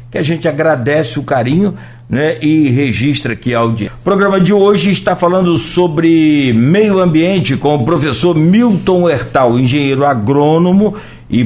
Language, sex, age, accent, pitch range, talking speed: Portuguese, male, 60-79, Brazilian, 120-170 Hz, 150 wpm